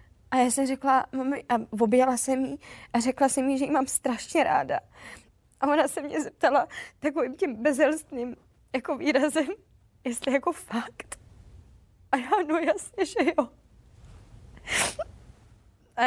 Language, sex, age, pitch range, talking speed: Czech, female, 20-39, 215-275 Hz, 140 wpm